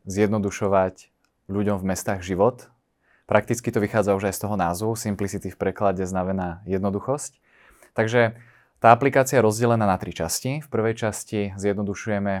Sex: male